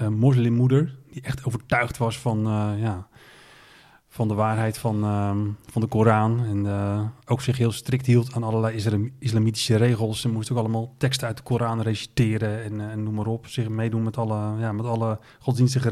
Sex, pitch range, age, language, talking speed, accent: male, 105-125 Hz, 30-49, Dutch, 195 wpm, Dutch